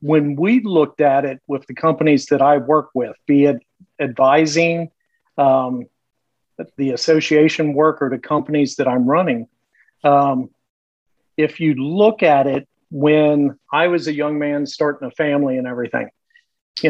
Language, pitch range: English, 140-170 Hz